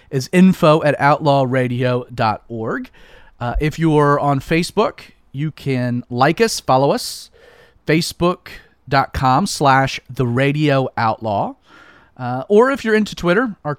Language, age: English, 30-49